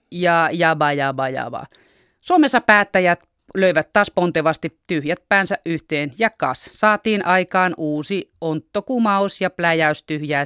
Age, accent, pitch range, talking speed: 30-49, native, 155-195 Hz, 120 wpm